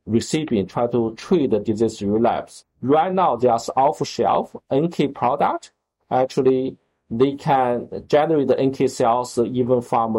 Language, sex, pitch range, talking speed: English, male, 120-145 Hz, 130 wpm